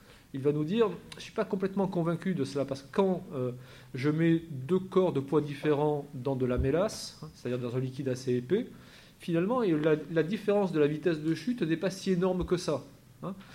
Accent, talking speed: French, 220 wpm